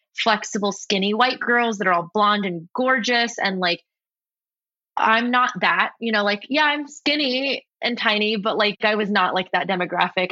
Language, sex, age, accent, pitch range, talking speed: English, female, 20-39, American, 180-220 Hz, 180 wpm